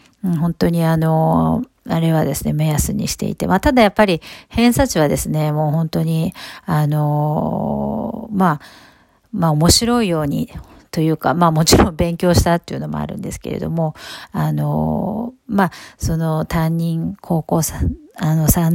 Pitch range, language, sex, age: 150-195 Hz, Japanese, female, 50-69